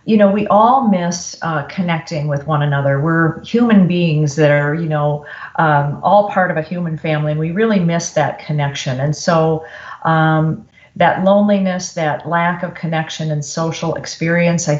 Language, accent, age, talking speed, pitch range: English, American, 40-59, 175 wpm, 150-175 Hz